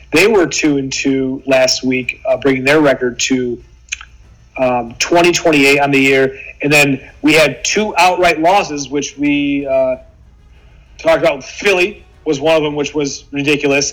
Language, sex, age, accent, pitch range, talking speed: English, male, 30-49, American, 130-165 Hz, 170 wpm